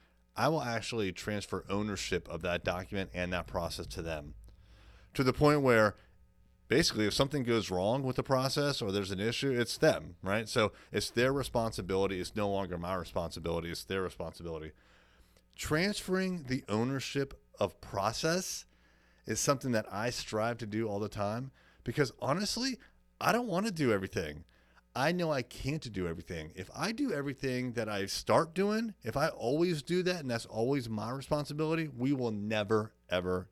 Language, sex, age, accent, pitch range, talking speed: English, male, 30-49, American, 90-130 Hz, 170 wpm